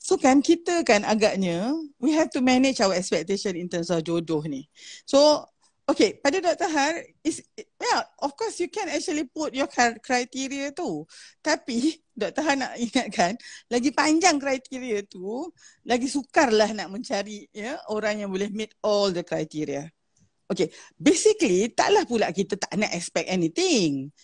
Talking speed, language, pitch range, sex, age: 155 wpm, Malay, 205-290 Hz, female, 40-59